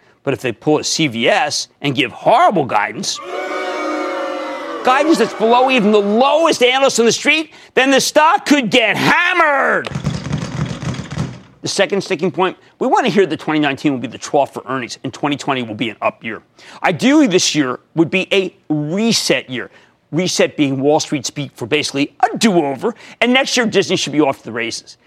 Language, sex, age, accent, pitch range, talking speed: English, male, 40-59, American, 150-245 Hz, 180 wpm